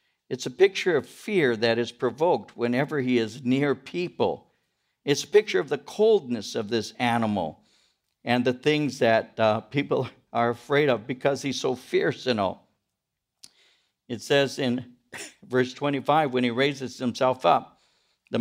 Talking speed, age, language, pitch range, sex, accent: 155 wpm, 60-79, English, 120-145 Hz, male, American